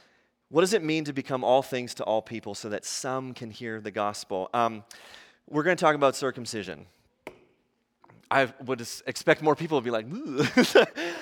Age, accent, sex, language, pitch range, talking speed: 30-49, American, male, English, 130-175 Hz, 180 wpm